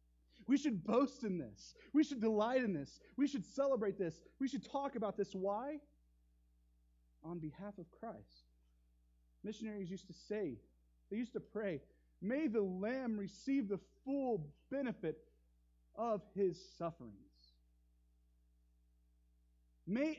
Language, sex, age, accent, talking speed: English, male, 30-49, American, 130 wpm